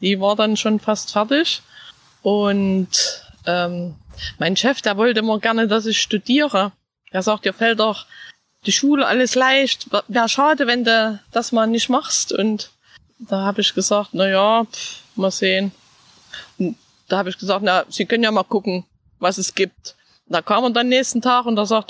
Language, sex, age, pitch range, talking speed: German, female, 20-39, 190-250 Hz, 185 wpm